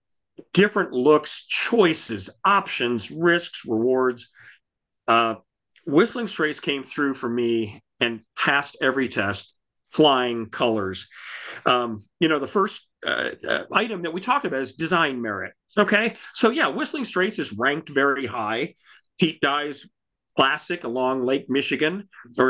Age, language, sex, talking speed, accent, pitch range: 40-59, English, male, 135 wpm, American, 120-155 Hz